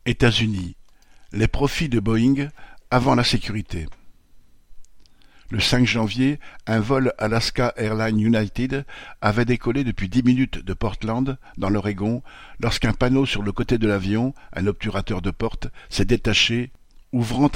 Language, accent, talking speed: French, French, 135 wpm